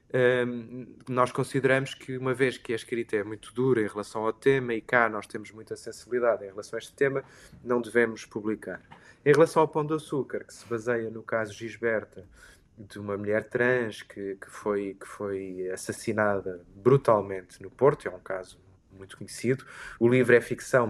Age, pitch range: 20-39, 105-130 Hz